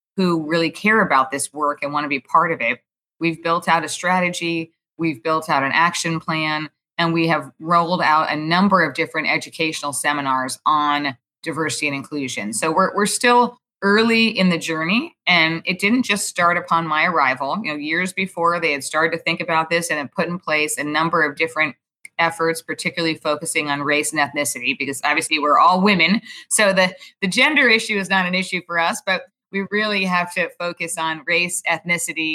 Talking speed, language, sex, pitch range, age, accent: 200 wpm, English, female, 150-175 Hz, 20-39, American